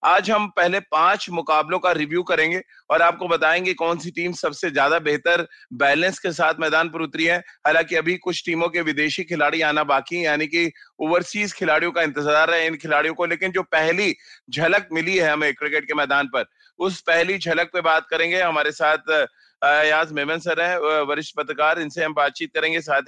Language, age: Hindi, 30-49